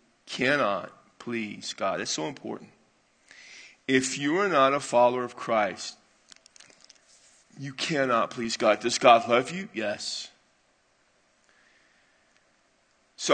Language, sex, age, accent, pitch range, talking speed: English, male, 40-59, American, 115-145 Hz, 115 wpm